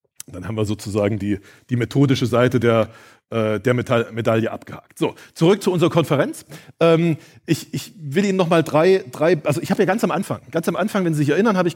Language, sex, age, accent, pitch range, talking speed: German, male, 40-59, German, 130-165 Hz, 210 wpm